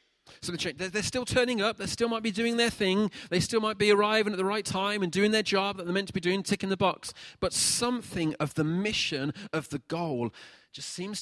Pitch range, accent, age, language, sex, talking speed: 140-185 Hz, British, 30-49, English, male, 235 wpm